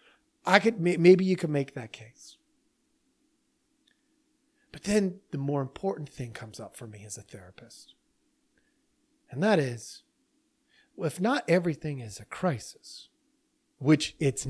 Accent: American